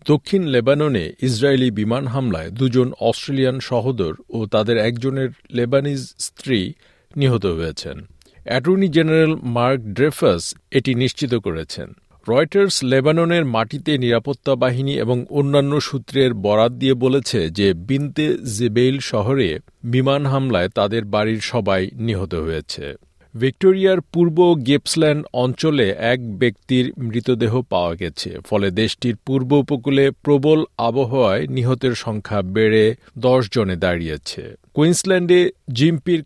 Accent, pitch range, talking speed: native, 115-145 Hz, 110 wpm